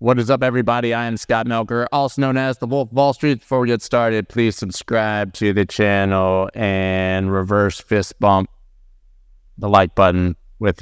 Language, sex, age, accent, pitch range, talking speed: English, male, 30-49, American, 95-140 Hz, 185 wpm